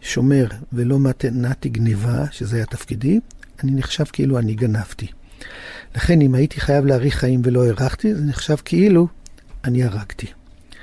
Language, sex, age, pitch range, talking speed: Hebrew, male, 50-69, 130-180 Hz, 140 wpm